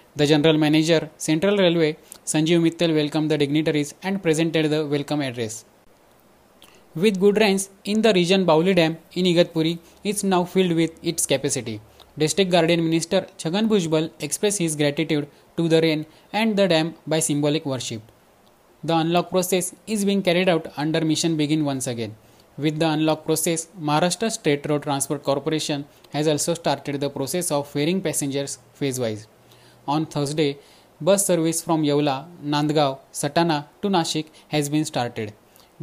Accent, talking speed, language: native, 155 wpm, Marathi